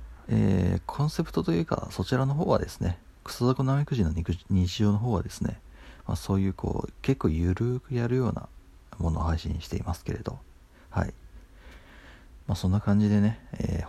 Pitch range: 80-105 Hz